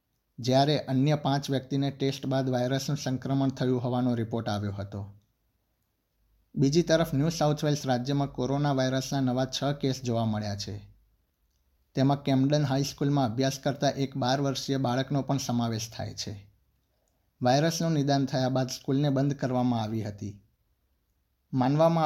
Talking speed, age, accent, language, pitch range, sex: 135 wpm, 60-79, native, Gujarati, 110-140 Hz, male